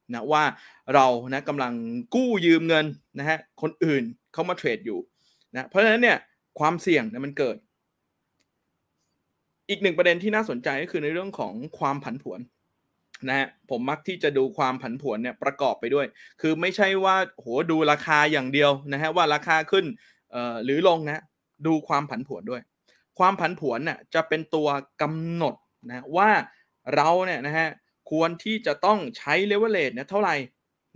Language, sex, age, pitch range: Thai, male, 20-39, 145-190 Hz